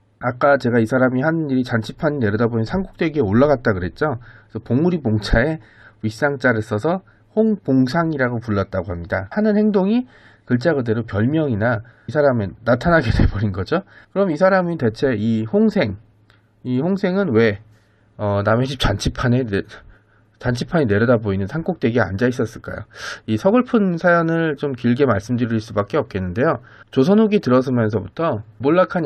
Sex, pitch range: male, 110-160 Hz